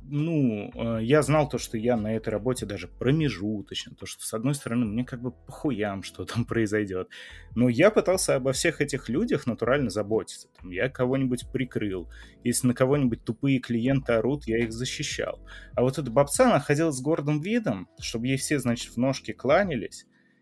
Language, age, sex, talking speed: Russian, 20-39, male, 175 wpm